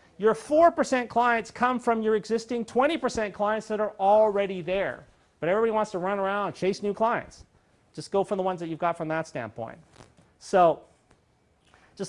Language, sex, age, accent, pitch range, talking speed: English, male, 40-59, American, 165-220 Hz, 180 wpm